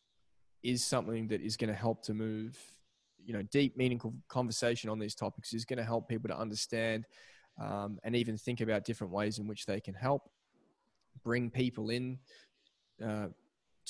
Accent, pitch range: Australian, 105-120 Hz